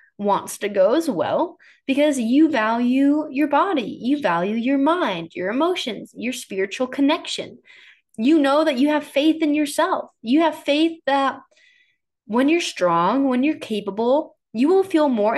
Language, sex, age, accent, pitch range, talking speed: English, female, 20-39, American, 215-305 Hz, 160 wpm